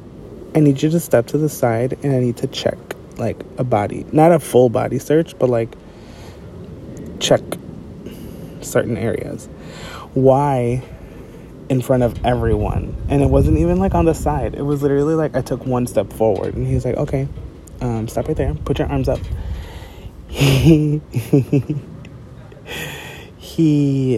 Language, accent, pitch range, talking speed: English, American, 110-145 Hz, 155 wpm